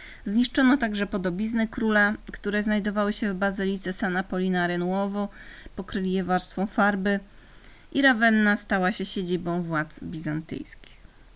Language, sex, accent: Polish, female, native